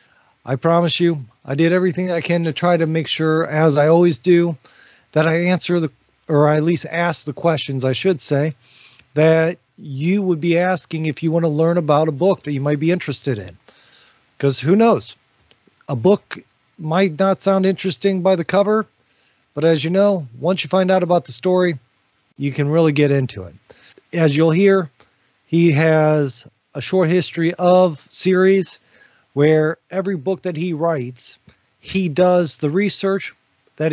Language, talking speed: English, 175 wpm